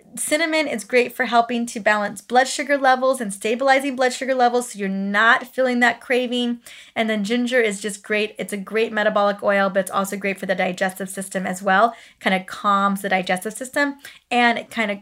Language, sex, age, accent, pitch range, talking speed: English, female, 20-39, American, 205-255 Hz, 200 wpm